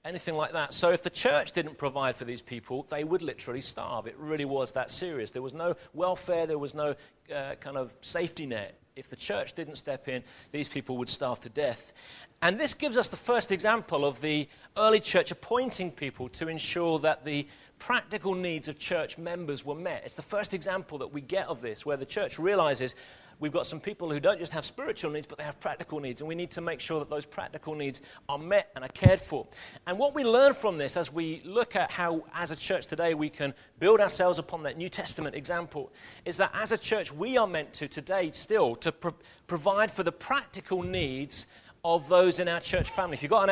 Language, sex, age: English, male, 40-59